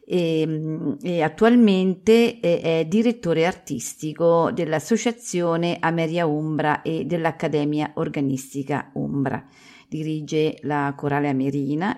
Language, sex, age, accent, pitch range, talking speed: Italian, female, 50-69, native, 145-175 Hz, 90 wpm